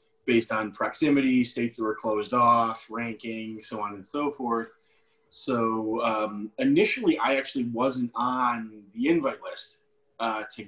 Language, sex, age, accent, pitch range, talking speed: English, male, 20-39, American, 110-135 Hz, 145 wpm